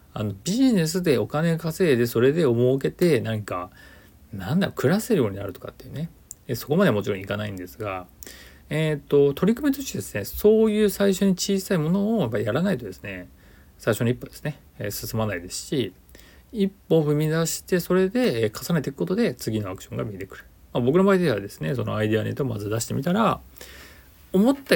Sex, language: male, Japanese